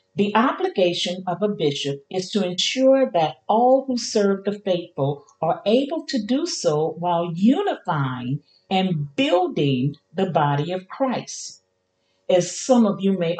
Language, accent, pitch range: English, American, 170-245 Hz